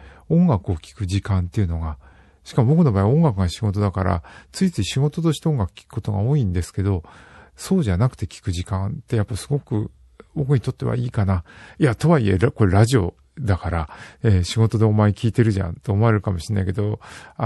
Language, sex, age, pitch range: Japanese, male, 50-69, 90-130 Hz